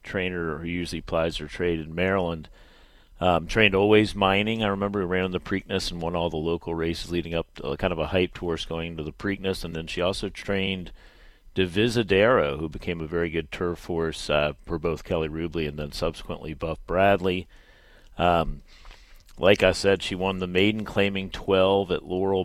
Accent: American